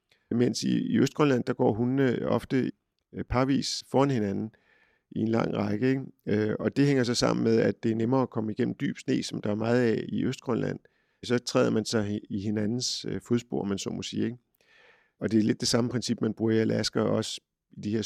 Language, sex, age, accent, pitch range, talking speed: Danish, male, 50-69, native, 110-125 Hz, 210 wpm